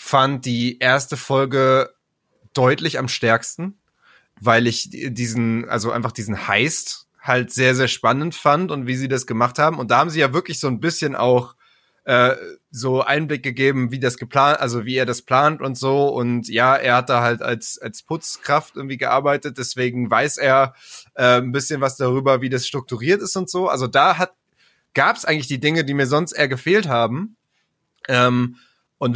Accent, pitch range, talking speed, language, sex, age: German, 125-145 Hz, 185 wpm, German, male, 20-39